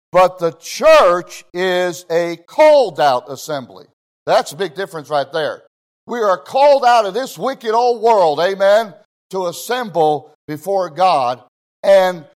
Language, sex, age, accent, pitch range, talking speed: English, male, 60-79, American, 170-245 Hz, 135 wpm